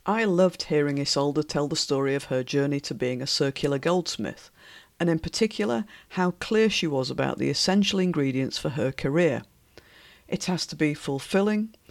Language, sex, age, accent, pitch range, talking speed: English, female, 50-69, British, 145-185 Hz, 170 wpm